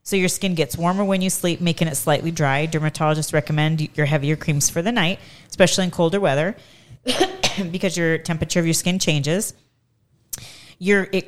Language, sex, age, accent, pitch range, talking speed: English, female, 30-49, American, 140-170 Hz, 175 wpm